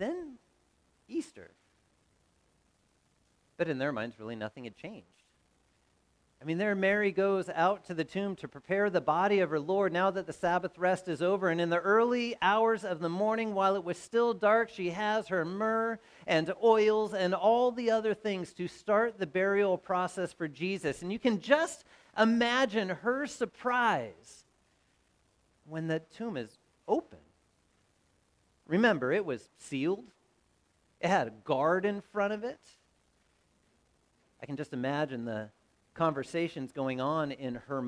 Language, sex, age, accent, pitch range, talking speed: English, male, 40-59, American, 150-210 Hz, 155 wpm